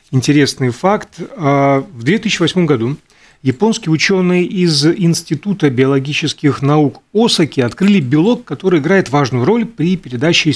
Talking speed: 115 wpm